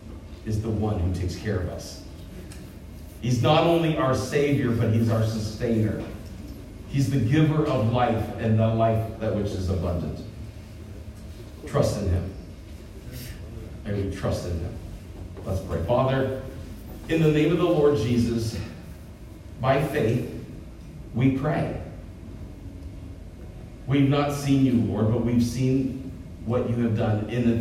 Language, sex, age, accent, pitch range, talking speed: English, male, 40-59, American, 95-130 Hz, 140 wpm